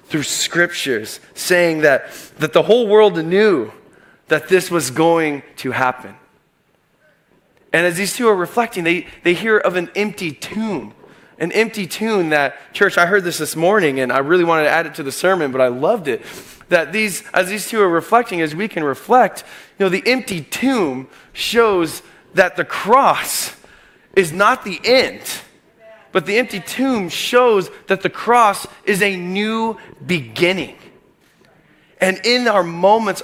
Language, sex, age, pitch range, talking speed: English, male, 20-39, 160-205 Hz, 165 wpm